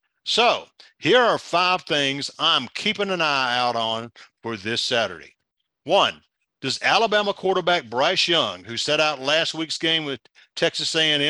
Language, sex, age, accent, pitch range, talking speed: English, male, 50-69, American, 125-185 Hz, 160 wpm